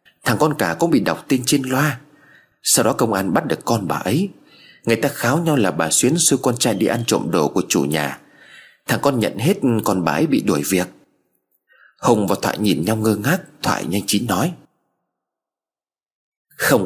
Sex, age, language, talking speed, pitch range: male, 30-49, Vietnamese, 205 wpm, 100-150 Hz